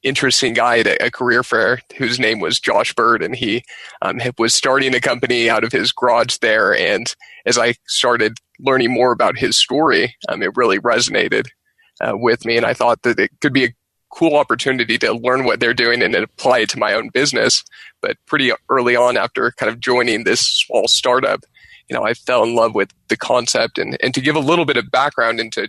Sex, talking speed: male, 215 wpm